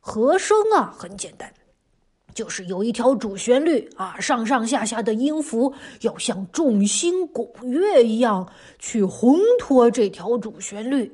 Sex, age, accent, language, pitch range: female, 30-49, native, Chinese, 220-290 Hz